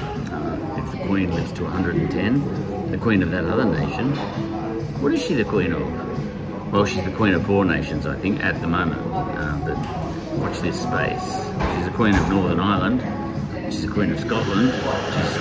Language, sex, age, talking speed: English, male, 50-69, 180 wpm